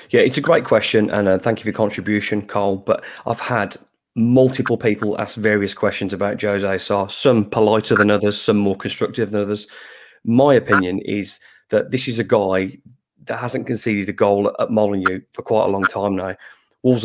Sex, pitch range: male, 105-120 Hz